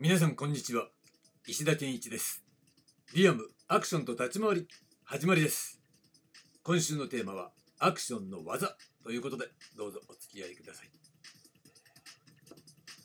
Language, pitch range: Japanese, 120-175 Hz